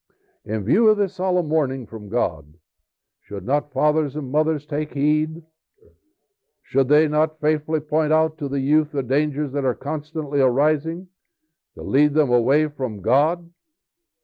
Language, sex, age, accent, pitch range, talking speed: English, male, 60-79, American, 120-165 Hz, 150 wpm